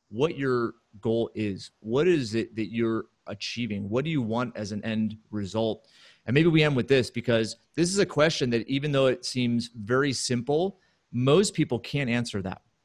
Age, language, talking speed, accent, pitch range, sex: 30-49, English, 190 wpm, American, 110-130 Hz, male